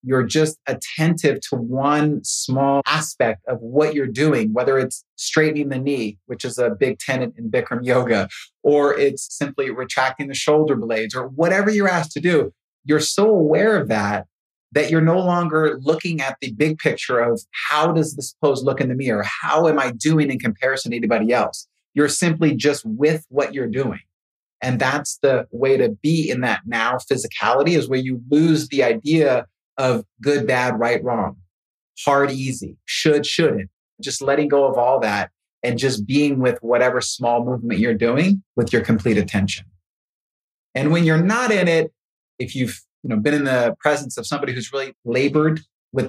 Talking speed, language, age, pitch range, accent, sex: 180 wpm, English, 30-49, 125-155 Hz, American, male